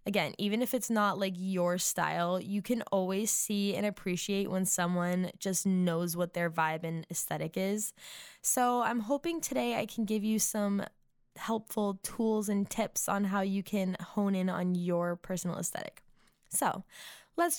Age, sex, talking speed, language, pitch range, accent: 10-29, female, 165 wpm, English, 180-215 Hz, American